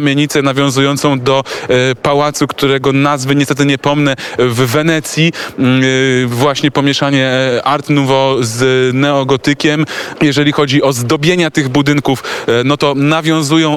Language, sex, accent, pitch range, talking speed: Polish, male, native, 135-155 Hz, 120 wpm